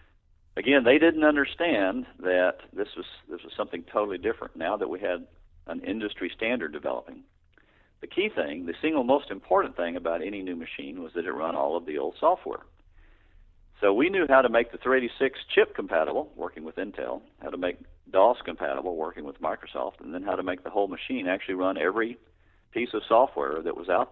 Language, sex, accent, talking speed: English, male, American, 195 wpm